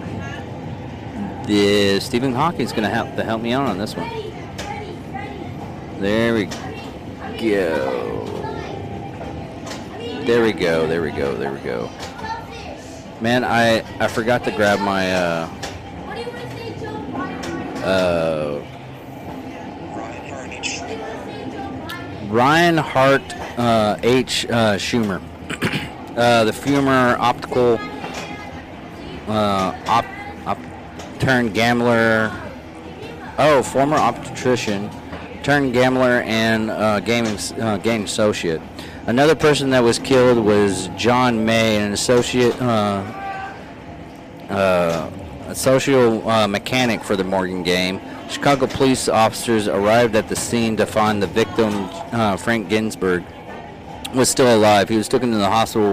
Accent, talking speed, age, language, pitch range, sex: American, 110 wpm, 40-59, English, 100-120 Hz, male